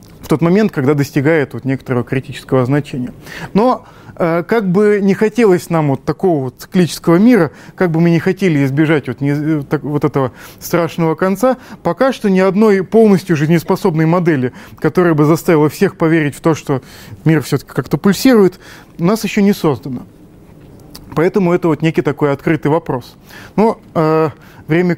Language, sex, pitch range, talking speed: Russian, male, 150-190 Hz, 160 wpm